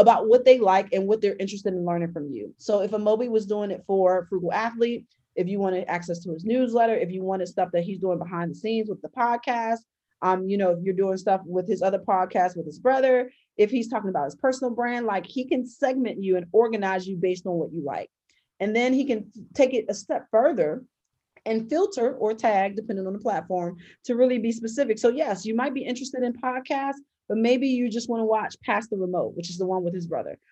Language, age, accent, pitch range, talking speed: English, 30-49, American, 190-240 Hz, 240 wpm